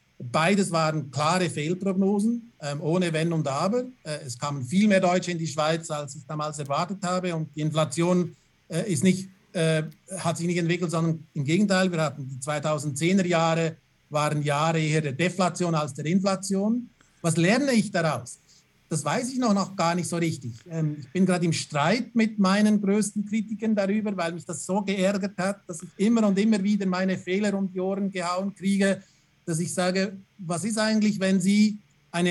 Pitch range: 155-195 Hz